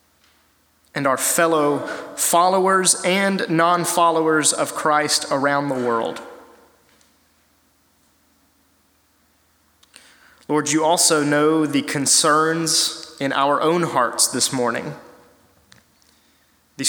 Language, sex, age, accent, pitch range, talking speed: English, male, 30-49, American, 140-170 Hz, 85 wpm